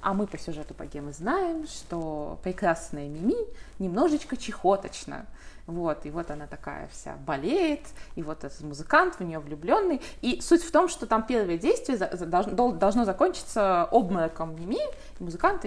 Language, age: Russian, 20-39